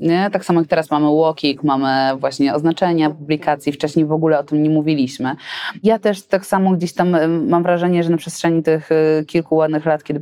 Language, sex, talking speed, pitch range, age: Polish, female, 200 wpm, 145-185 Hz, 20-39